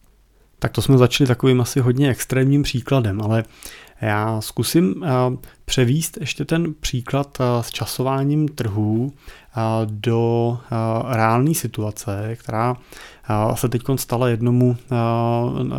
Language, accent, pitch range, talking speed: Czech, native, 110-130 Hz, 125 wpm